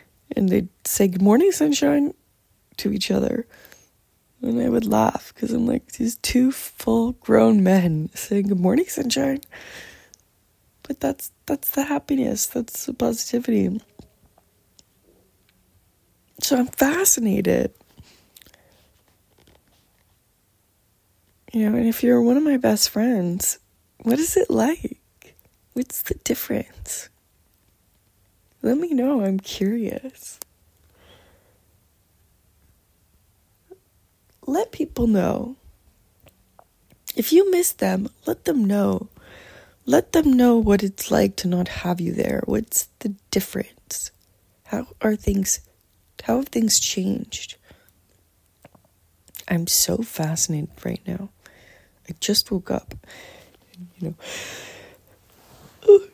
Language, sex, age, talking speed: English, female, 20-39, 110 wpm